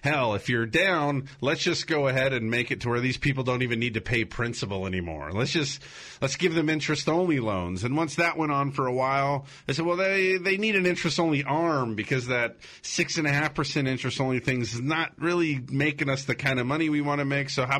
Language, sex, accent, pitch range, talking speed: English, male, American, 120-160 Hz, 225 wpm